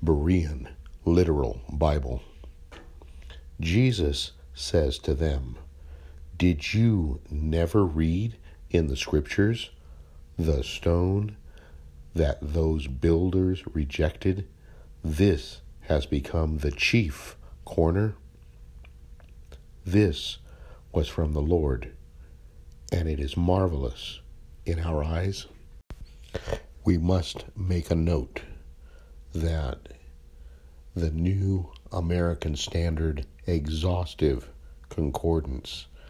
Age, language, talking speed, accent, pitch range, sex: 60-79, English, 85 wpm, American, 70-85 Hz, male